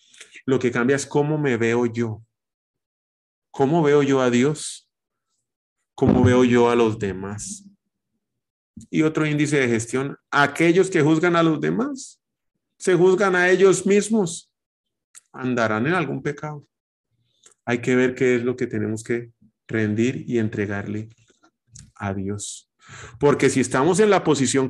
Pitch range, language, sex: 115-155 Hz, Spanish, male